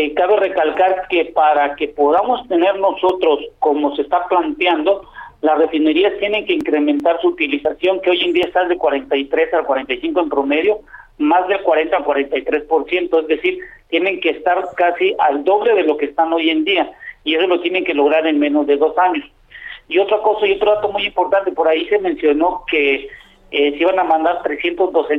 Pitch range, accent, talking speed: 155-195 Hz, Mexican, 200 wpm